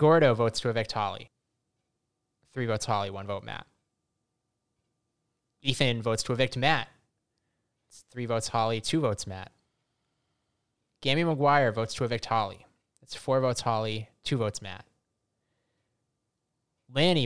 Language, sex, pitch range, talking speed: English, male, 115-140 Hz, 130 wpm